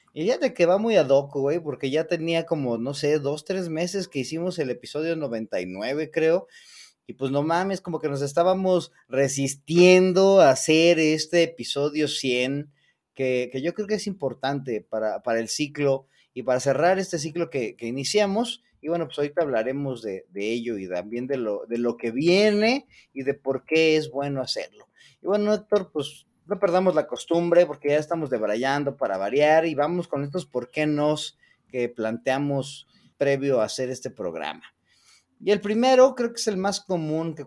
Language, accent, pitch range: Spanish, Mexican, 135-175 Hz